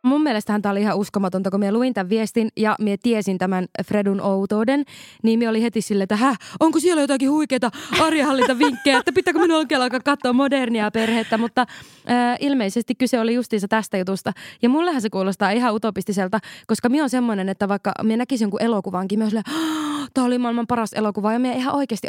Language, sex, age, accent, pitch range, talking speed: Finnish, female, 20-39, native, 200-245 Hz, 195 wpm